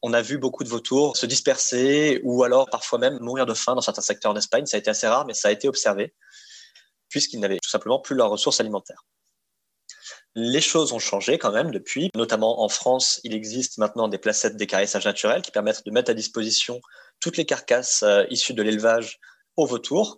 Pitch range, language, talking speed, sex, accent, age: 110-130 Hz, French, 200 wpm, male, French, 20-39